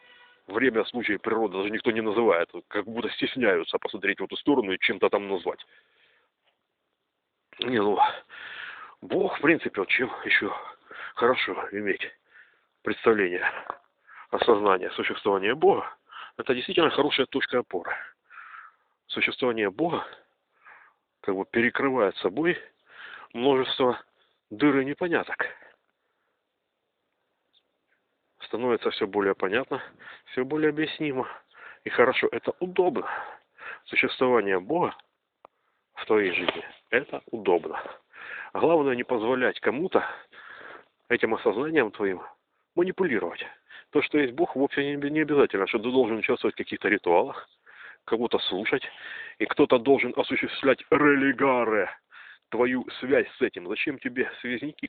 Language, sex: Russian, male